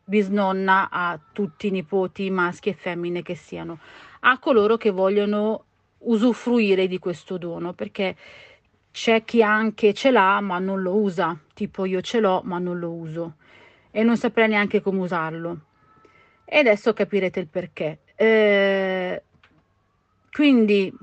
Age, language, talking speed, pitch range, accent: 40-59, Italian, 140 wpm, 180-220 Hz, native